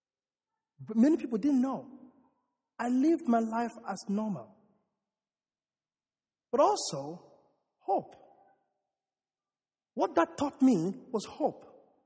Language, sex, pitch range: English, male, 210-275 Hz